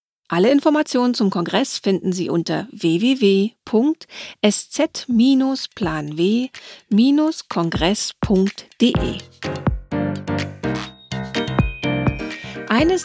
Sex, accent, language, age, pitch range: female, German, German, 50-69, 195-250 Hz